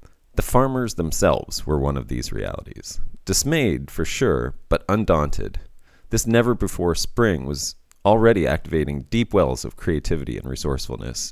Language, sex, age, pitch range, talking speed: English, male, 30-49, 75-95 Hz, 125 wpm